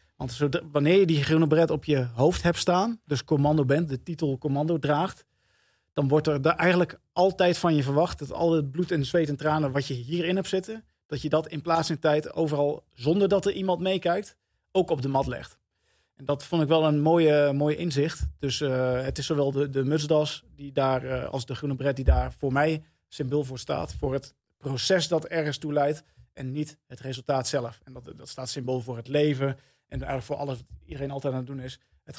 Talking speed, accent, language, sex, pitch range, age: 220 wpm, Dutch, Dutch, male, 135-160 Hz, 40-59